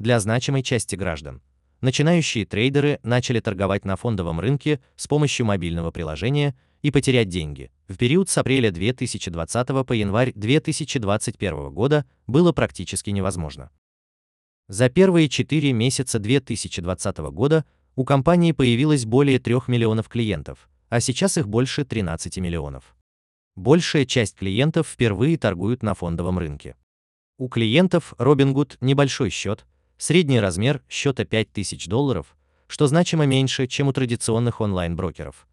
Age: 30-49